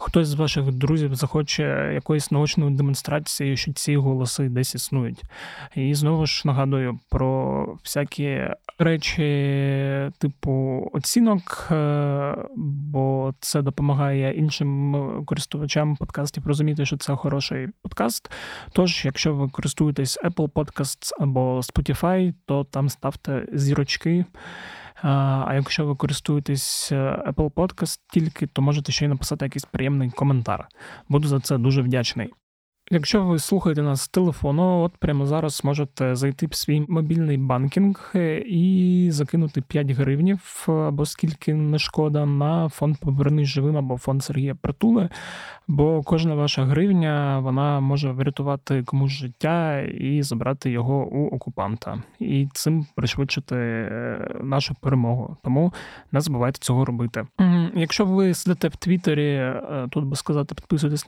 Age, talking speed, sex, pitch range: 20-39, 125 wpm, male, 135-160 Hz